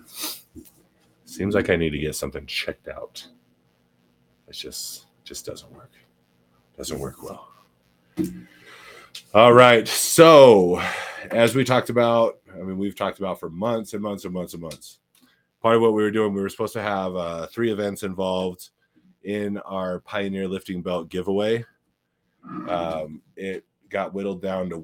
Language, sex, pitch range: English, male, 80-100 Hz